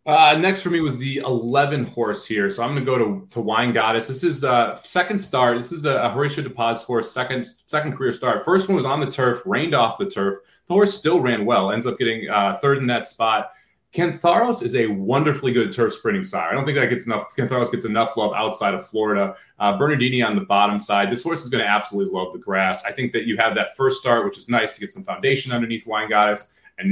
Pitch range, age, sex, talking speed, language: 105-140 Hz, 30-49, male, 250 wpm, English